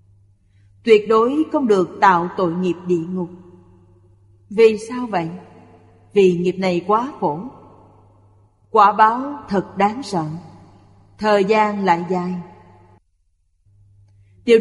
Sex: female